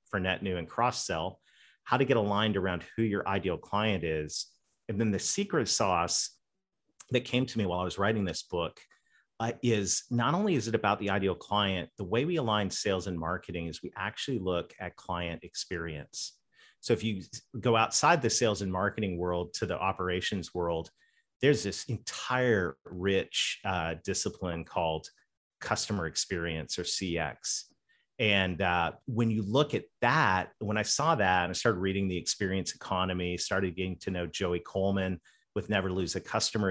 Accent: American